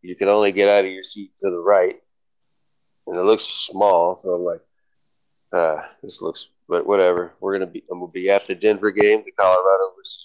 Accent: American